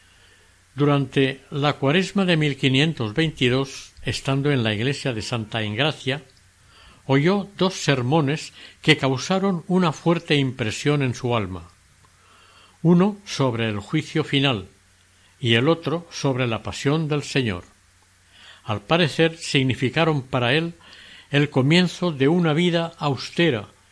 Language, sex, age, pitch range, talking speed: Spanish, male, 60-79, 105-155 Hz, 120 wpm